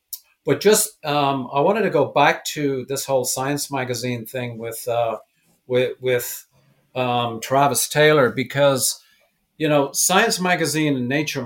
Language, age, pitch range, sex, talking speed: English, 50-69, 125-155 Hz, male, 145 wpm